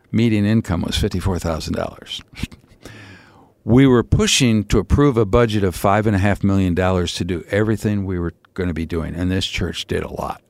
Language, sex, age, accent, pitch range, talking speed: English, male, 60-79, American, 95-115 Hz, 190 wpm